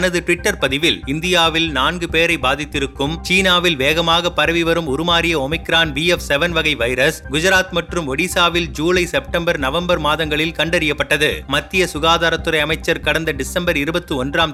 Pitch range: 150-180 Hz